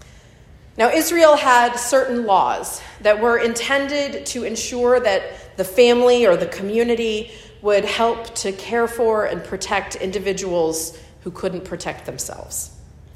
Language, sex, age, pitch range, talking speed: English, female, 40-59, 185-235 Hz, 130 wpm